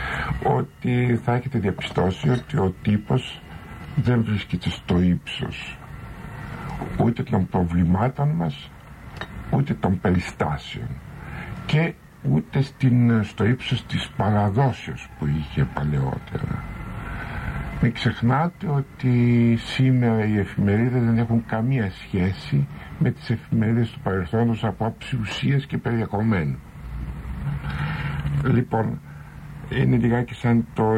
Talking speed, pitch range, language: 100 wpm, 105-130 Hz, Greek